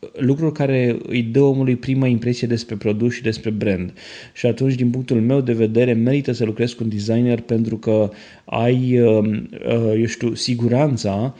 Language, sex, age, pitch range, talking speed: Romanian, male, 20-39, 110-130 Hz, 165 wpm